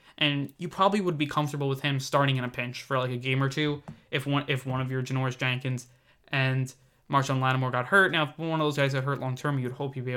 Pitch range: 135-165 Hz